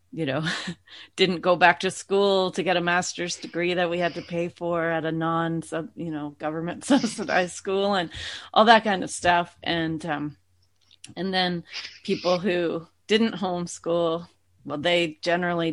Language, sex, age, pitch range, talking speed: English, female, 30-49, 155-180 Hz, 170 wpm